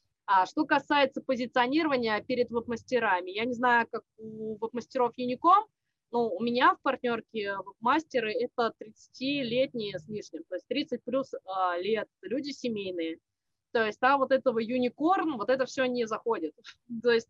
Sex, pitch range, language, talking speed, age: female, 205-260 Hz, Russian, 145 wpm, 20-39